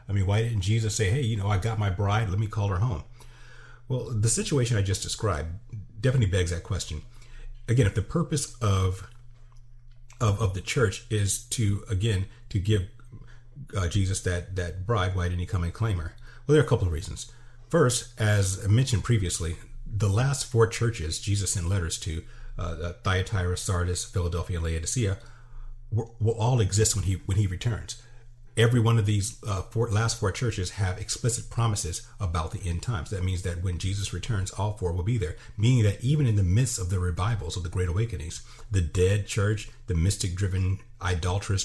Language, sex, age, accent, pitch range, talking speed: English, male, 40-59, American, 90-120 Hz, 195 wpm